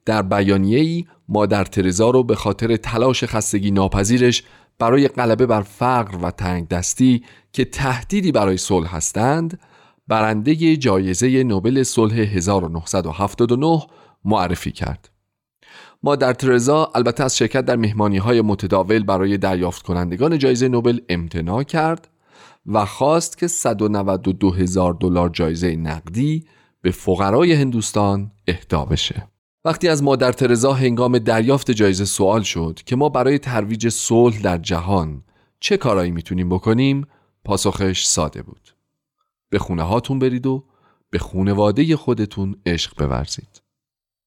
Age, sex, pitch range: 40-59, male, 95-125 Hz